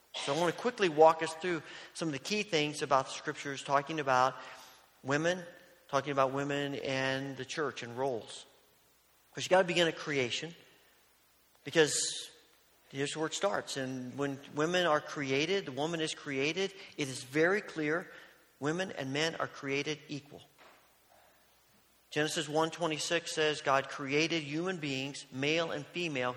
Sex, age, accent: male, 40-59, American